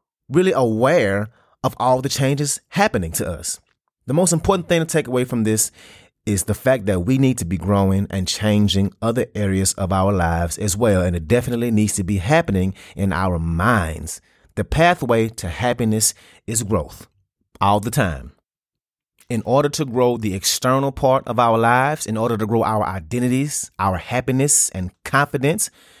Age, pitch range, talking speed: 30-49, 95-130 Hz, 175 wpm